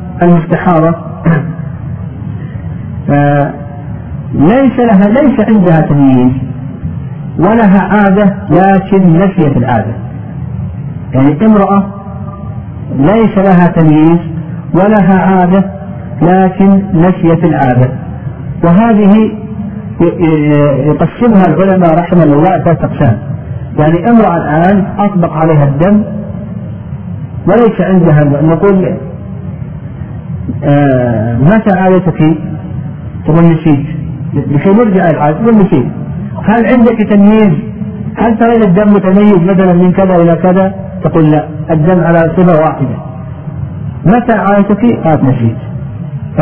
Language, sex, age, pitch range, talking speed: Arabic, male, 50-69, 145-195 Hz, 90 wpm